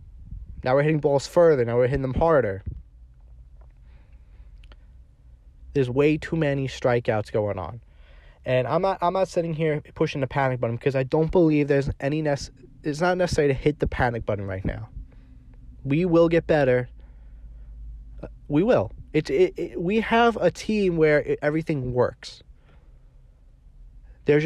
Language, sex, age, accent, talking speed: English, male, 20-39, American, 155 wpm